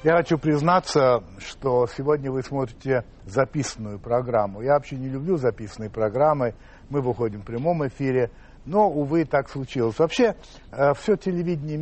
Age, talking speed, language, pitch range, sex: 60-79, 140 wpm, Russian, 125-165 Hz, male